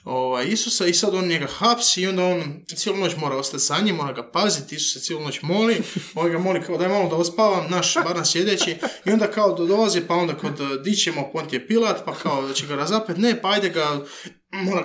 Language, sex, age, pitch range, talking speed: Croatian, male, 20-39, 145-205 Hz, 235 wpm